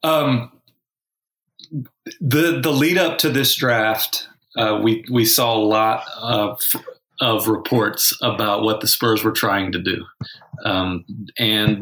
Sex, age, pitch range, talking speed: male, 40-59, 110-125 Hz, 135 wpm